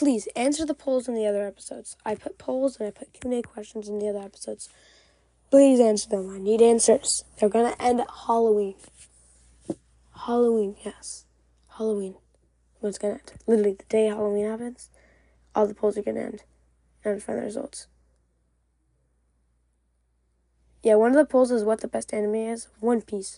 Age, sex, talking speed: 10-29, female, 175 wpm